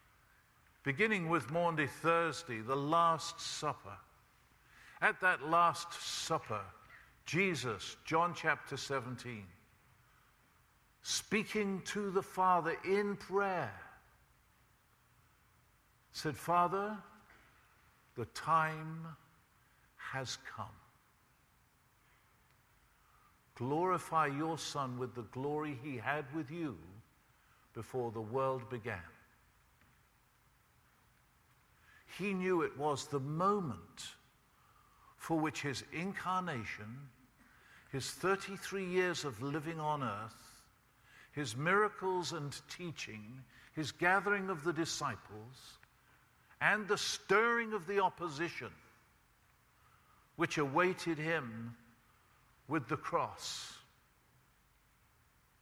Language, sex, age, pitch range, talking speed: English, male, 50-69, 125-180 Hz, 85 wpm